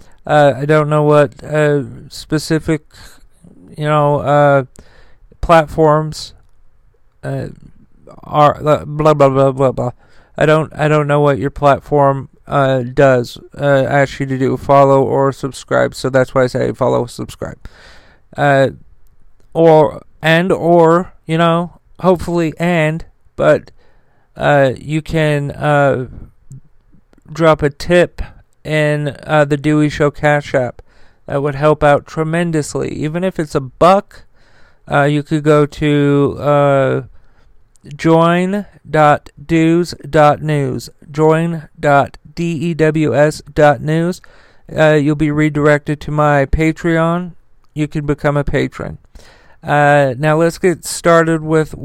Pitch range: 140-155 Hz